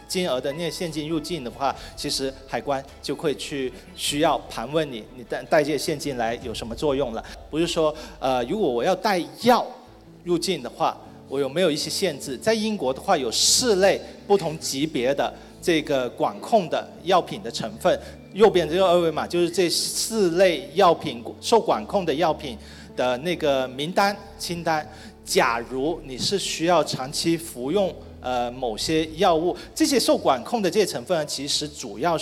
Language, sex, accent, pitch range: Chinese, male, native, 130-175 Hz